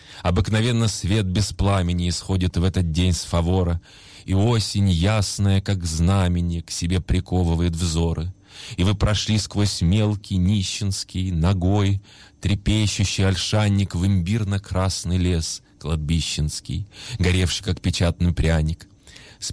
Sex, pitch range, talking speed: male, 85-100 Hz, 115 wpm